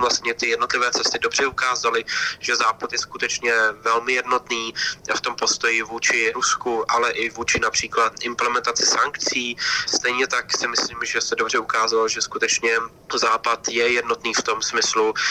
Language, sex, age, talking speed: Slovak, male, 20-39, 155 wpm